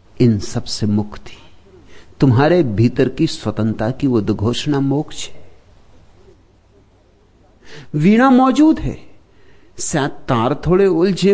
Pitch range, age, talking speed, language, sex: 120-195 Hz, 60-79, 100 wpm, Hindi, male